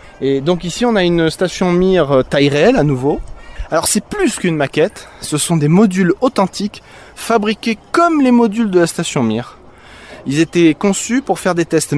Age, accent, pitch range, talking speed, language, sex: 20-39, French, 145-205 Hz, 185 wpm, French, male